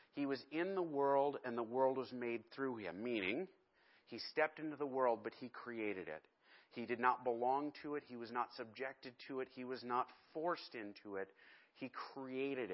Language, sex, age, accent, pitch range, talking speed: English, male, 40-59, American, 120-150 Hz, 200 wpm